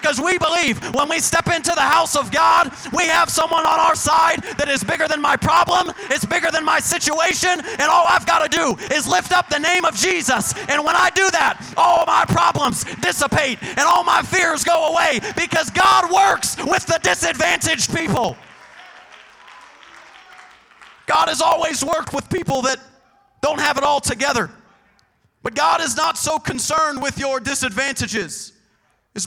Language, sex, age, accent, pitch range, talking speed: English, male, 30-49, American, 255-315 Hz, 175 wpm